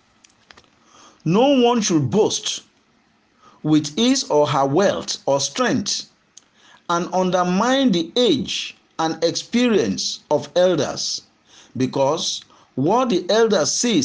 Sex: male